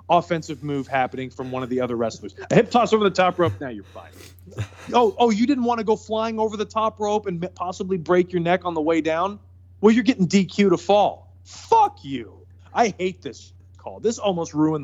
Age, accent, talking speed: 30-49, American, 225 wpm